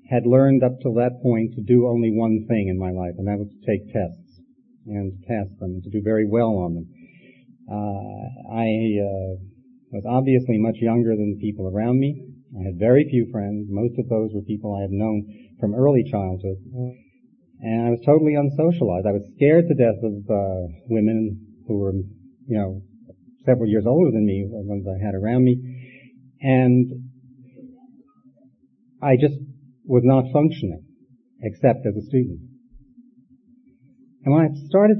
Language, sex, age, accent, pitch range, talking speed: English, male, 40-59, American, 105-135 Hz, 175 wpm